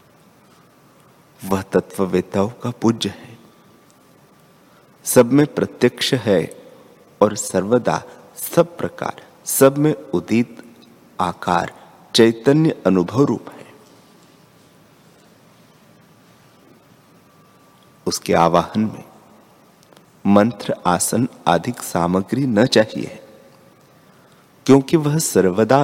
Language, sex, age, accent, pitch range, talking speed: Hindi, male, 50-69, native, 95-130 Hz, 75 wpm